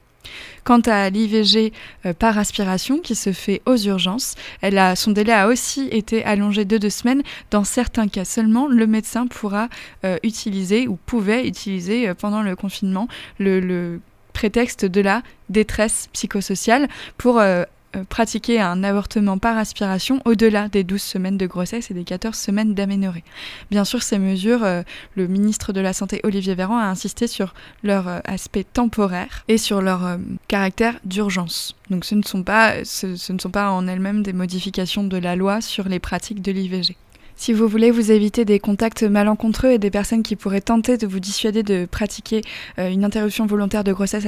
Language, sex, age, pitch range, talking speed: French, female, 20-39, 195-225 Hz, 180 wpm